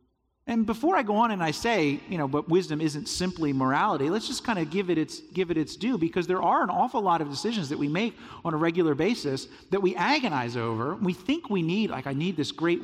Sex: male